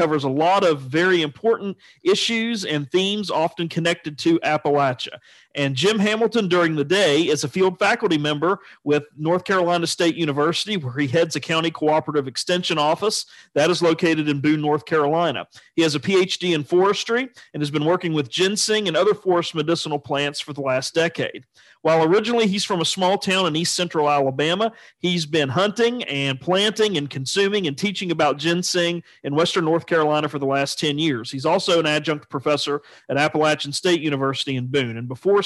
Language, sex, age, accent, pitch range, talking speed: English, male, 40-59, American, 145-185 Hz, 185 wpm